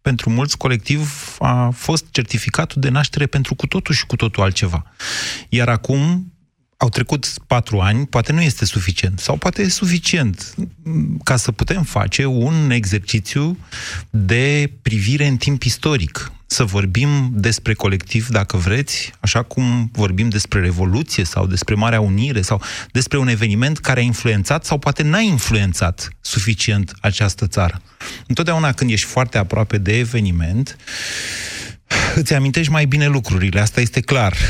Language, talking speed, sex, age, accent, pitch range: Romanian, 145 wpm, male, 30-49, native, 105-140 Hz